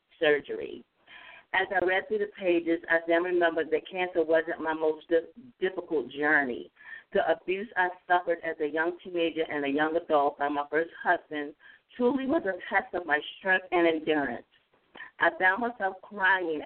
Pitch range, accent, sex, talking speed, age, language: 160-190 Hz, American, female, 165 wpm, 50-69, English